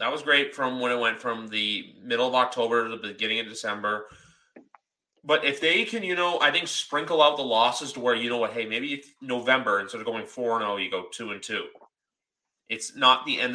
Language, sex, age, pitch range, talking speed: English, male, 30-49, 110-130 Hz, 230 wpm